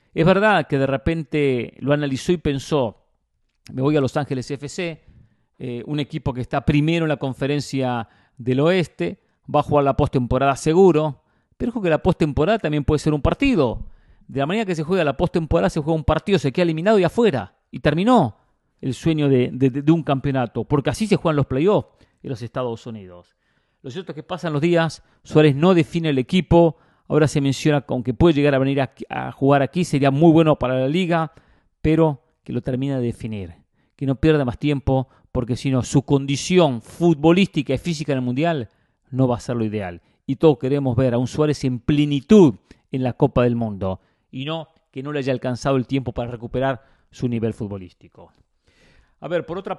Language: English